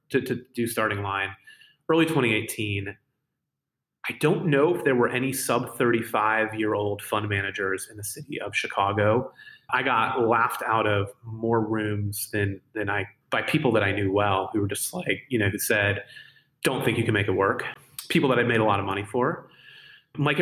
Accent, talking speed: American, 195 wpm